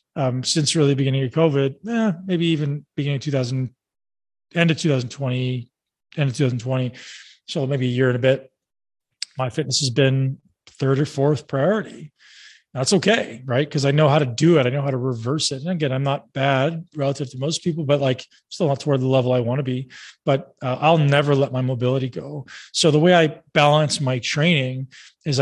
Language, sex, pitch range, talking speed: English, male, 130-160 Hz, 200 wpm